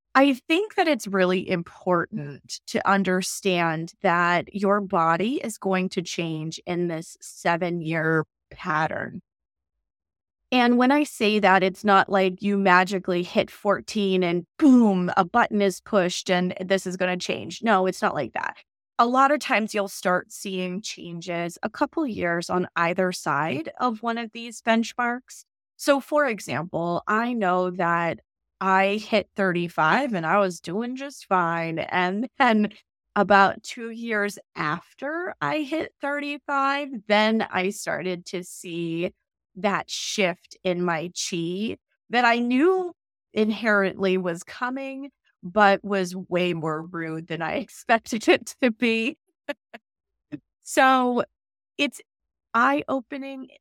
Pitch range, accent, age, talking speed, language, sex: 180-245 Hz, American, 20-39, 135 wpm, English, female